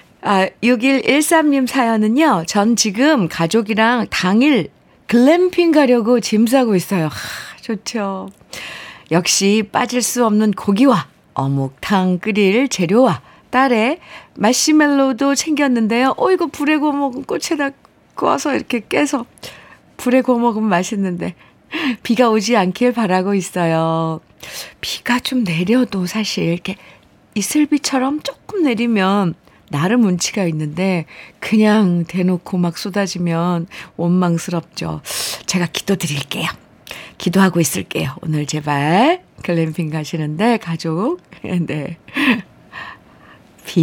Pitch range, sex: 175-250 Hz, female